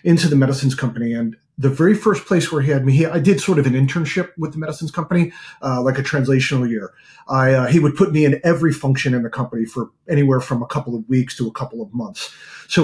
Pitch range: 130-160 Hz